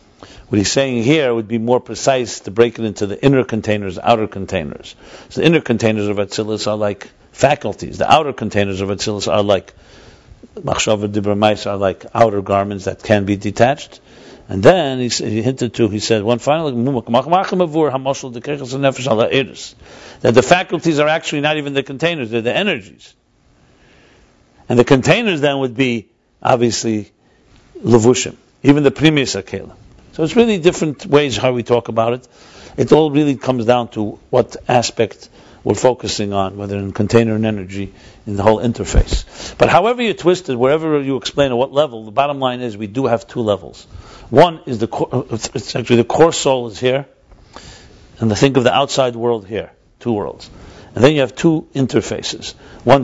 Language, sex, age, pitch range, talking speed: English, male, 60-79, 105-135 Hz, 170 wpm